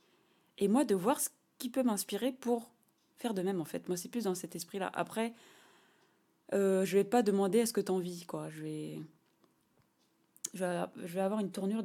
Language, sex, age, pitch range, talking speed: French, female, 20-39, 180-230 Hz, 200 wpm